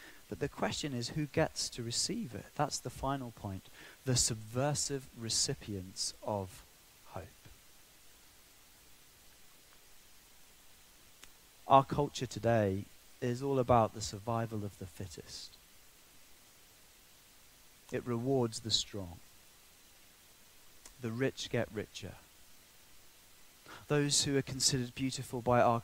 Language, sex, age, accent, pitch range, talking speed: English, male, 30-49, British, 100-125 Hz, 100 wpm